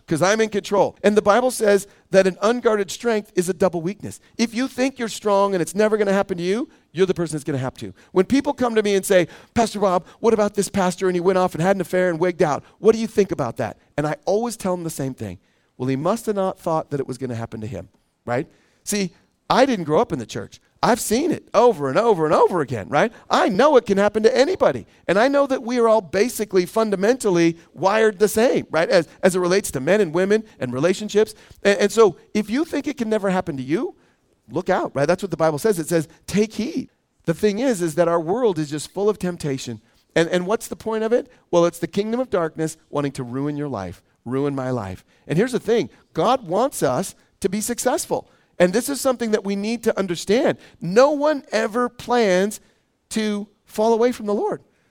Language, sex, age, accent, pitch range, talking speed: English, male, 40-59, American, 170-225 Hz, 240 wpm